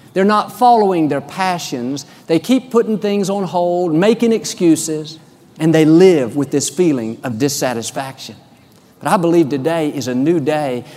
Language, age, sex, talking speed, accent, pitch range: English, 50-69, male, 160 wpm, American, 145-195 Hz